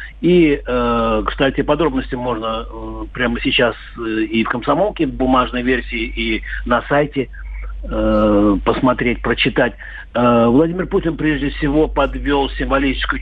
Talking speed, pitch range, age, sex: 105 wpm, 120-150 Hz, 50-69, male